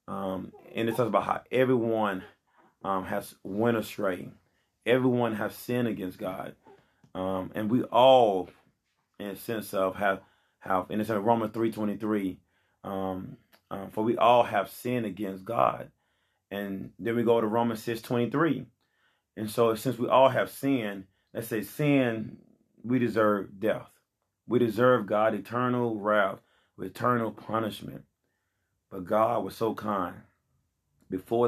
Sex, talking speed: male, 145 wpm